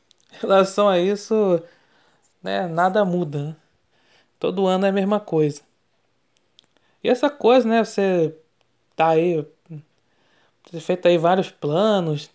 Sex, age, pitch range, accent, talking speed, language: male, 20-39, 160-205 Hz, Brazilian, 125 wpm, Portuguese